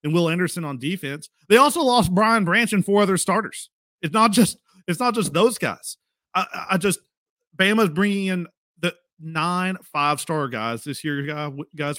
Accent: American